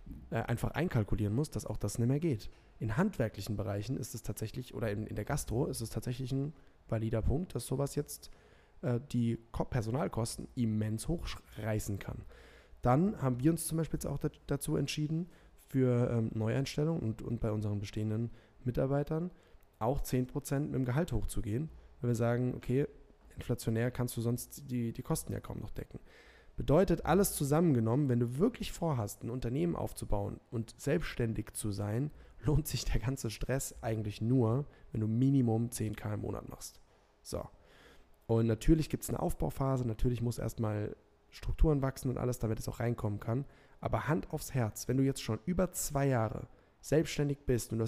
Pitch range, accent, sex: 110-145 Hz, German, male